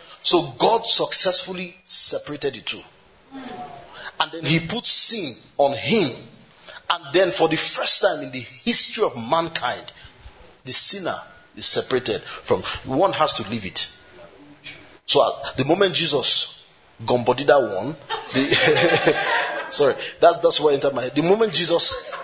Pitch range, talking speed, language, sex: 155-230 Hz, 135 wpm, English, male